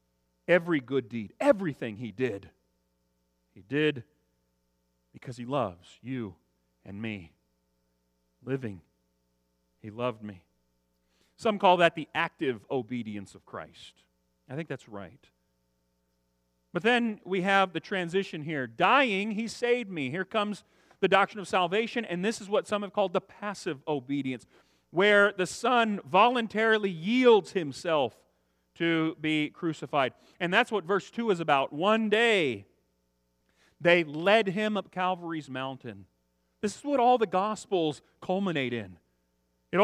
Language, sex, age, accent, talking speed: English, male, 40-59, American, 135 wpm